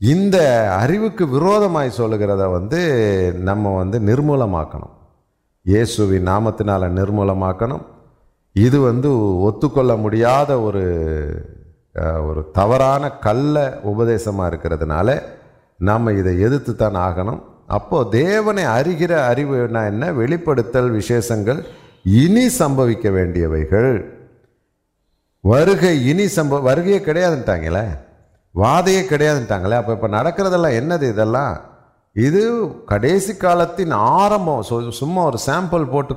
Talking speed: 90 wpm